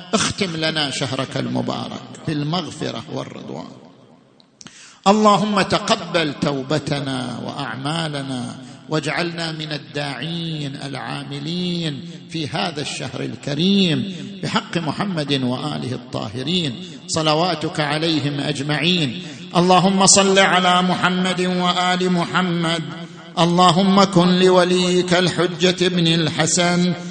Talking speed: 80 wpm